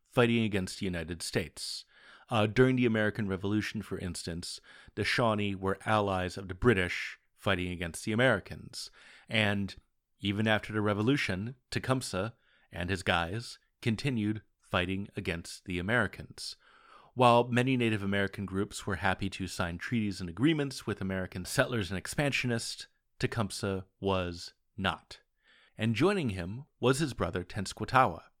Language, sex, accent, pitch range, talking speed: English, male, American, 95-125 Hz, 135 wpm